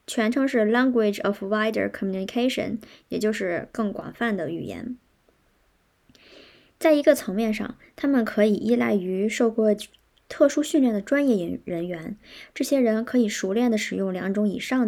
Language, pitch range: Chinese, 200-250 Hz